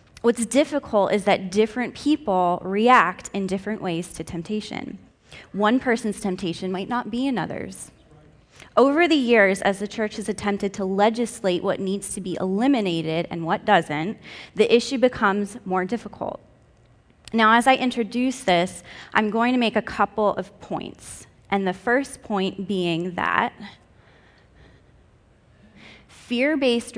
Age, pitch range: 20-39, 180-230 Hz